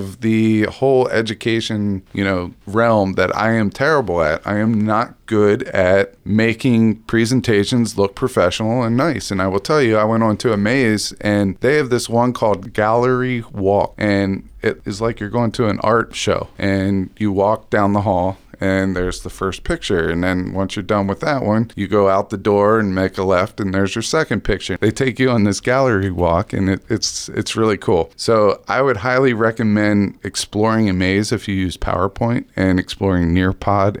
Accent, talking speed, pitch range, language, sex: American, 200 wpm, 95-120 Hz, English, male